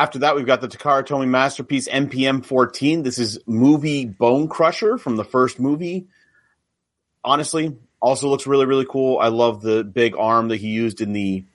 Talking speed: 175 wpm